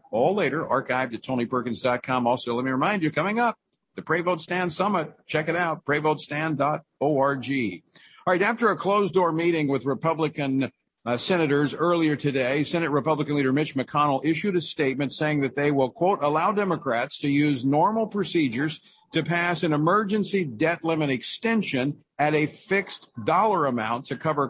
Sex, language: male, English